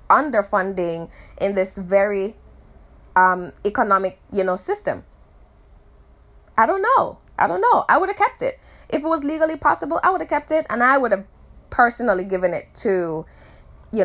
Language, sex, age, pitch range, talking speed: English, female, 20-39, 185-245 Hz, 165 wpm